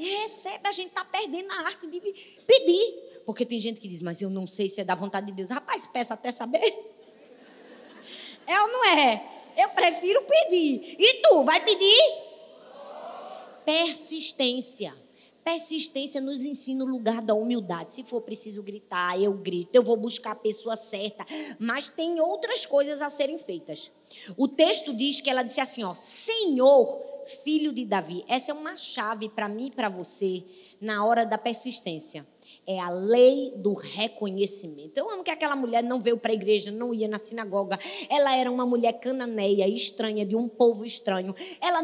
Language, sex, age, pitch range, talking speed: Portuguese, female, 20-39, 210-315 Hz, 175 wpm